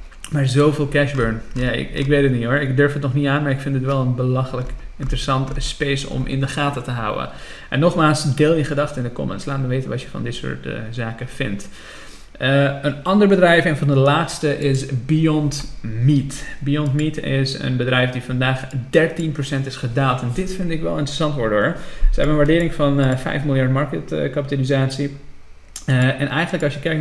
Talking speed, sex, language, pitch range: 215 wpm, male, Dutch, 125-145 Hz